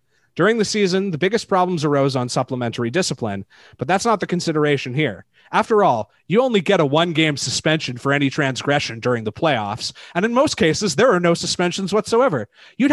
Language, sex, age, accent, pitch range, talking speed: English, male, 30-49, American, 125-185 Hz, 185 wpm